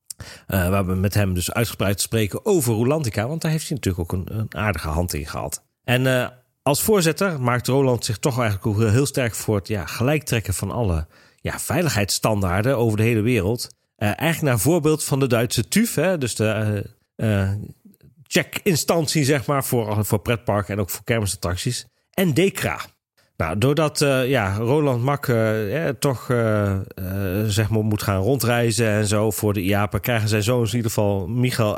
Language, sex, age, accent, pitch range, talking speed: Dutch, male, 40-59, Dutch, 105-135 Hz, 185 wpm